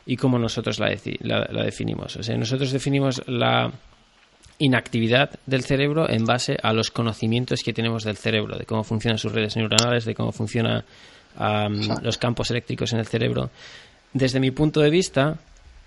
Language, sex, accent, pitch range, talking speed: Spanish, male, Spanish, 110-135 Hz, 175 wpm